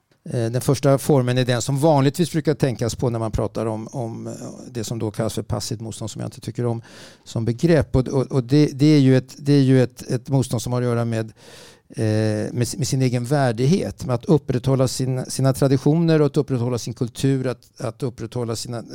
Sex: male